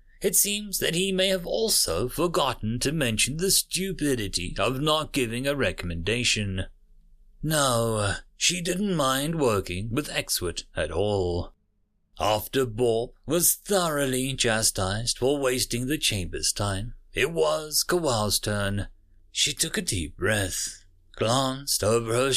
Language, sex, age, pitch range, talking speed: English, male, 30-49, 95-150 Hz, 130 wpm